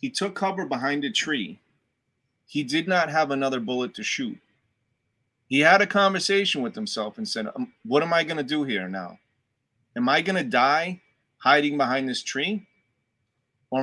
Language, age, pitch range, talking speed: English, 30-49, 125-195 Hz, 175 wpm